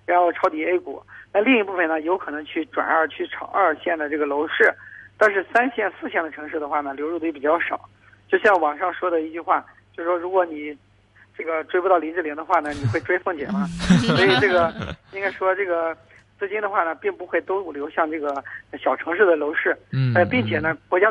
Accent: native